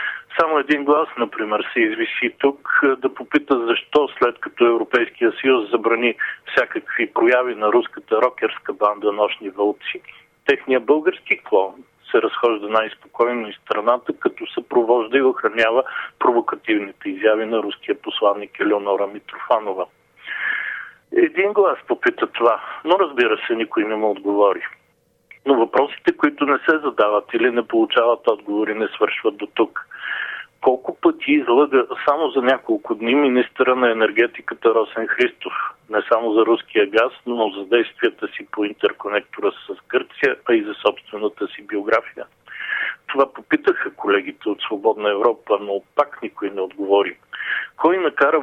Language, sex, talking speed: Bulgarian, male, 135 wpm